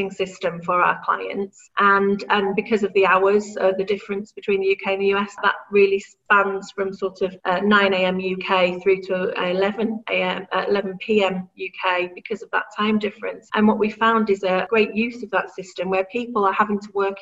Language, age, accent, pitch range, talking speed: English, 40-59, British, 190-210 Hz, 205 wpm